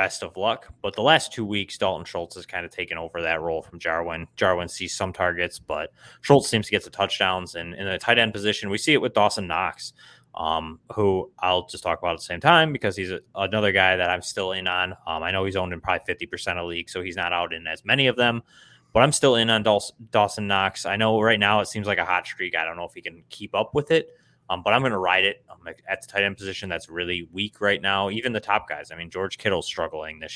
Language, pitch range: English, 90-115 Hz